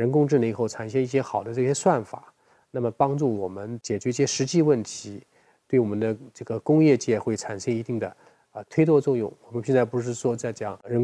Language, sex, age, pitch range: Chinese, male, 20-39, 110-135 Hz